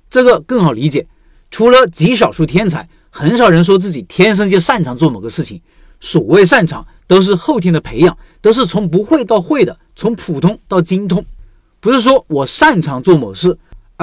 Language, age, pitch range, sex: Chinese, 50-69, 165-240 Hz, male